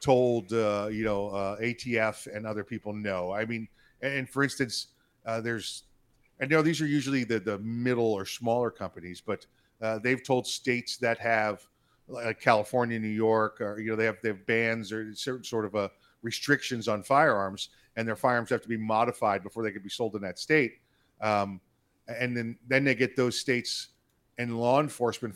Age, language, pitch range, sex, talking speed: 40-59, English, 105-120 Hz, male, 200 wpm